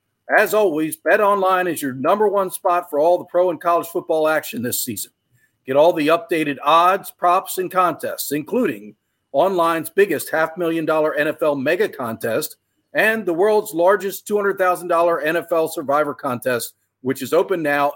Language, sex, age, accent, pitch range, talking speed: English, male, 50-69, American, 145-185 Hz, 160 wpm